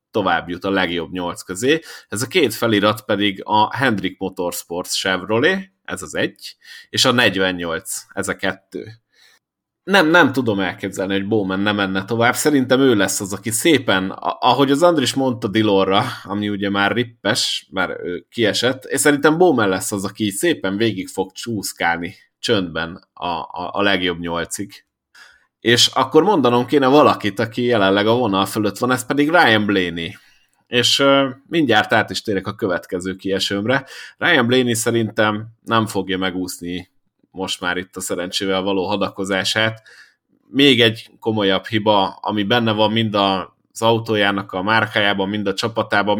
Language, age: Hungarian, 30-49